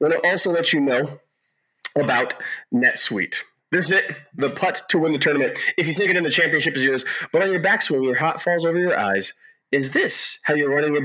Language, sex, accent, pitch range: English, male, American, 135-175 Hz